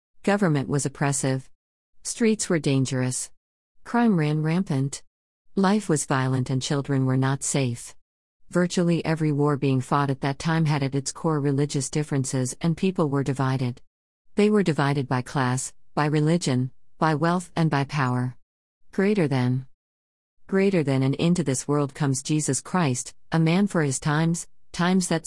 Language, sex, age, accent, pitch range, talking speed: English, female, 50-69, American, 130-165 Hz, 155 wpm